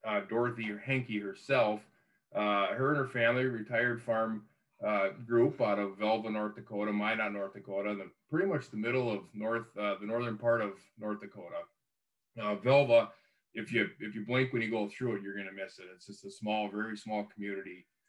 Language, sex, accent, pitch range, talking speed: English, male, American, 105-125 Hz, 200 wpm